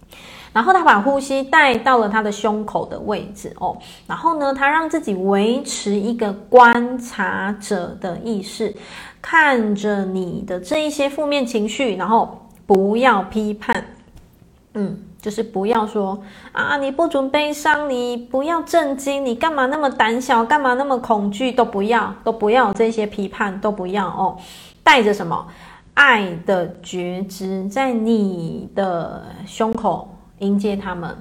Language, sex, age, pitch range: Chinese, female, 20-39, 200-255 Hz